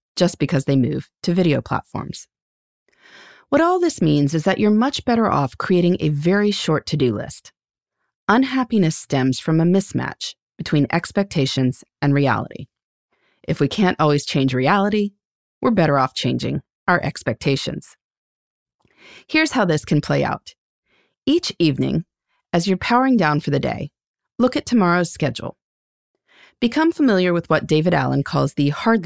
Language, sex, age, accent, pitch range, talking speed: English, female, 30-49, American, 145-215 Hz, 150 wpm